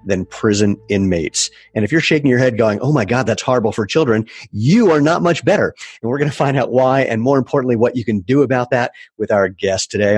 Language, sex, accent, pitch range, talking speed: English, male, American, 100-125 Hz, 250 wpm